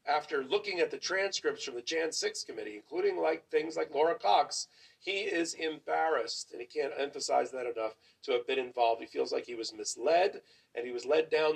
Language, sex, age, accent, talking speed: English, male, 40-59, American, 210 wpm